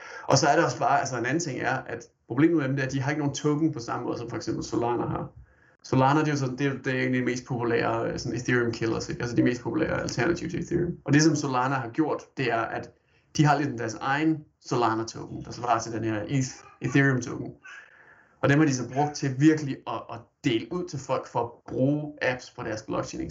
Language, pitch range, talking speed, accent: Danish, 120-150 Hz, 240 wpm, native